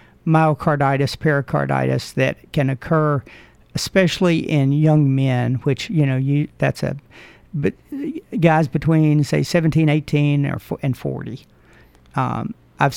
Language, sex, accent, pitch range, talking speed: English, male, American, 130-155 Hz, 120 wpm